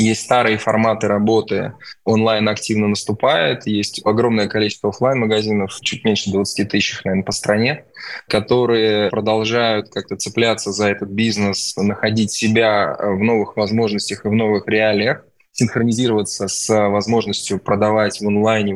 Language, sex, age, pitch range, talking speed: Russian, male, 20-39, 100-115 Hz, 130 wpm